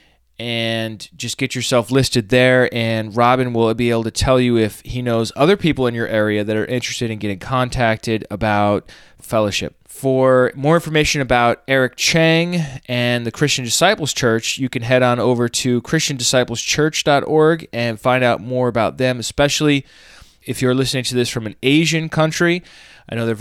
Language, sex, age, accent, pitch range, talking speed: English, male, 20-39, American, 115-135 Hz, 170 wpm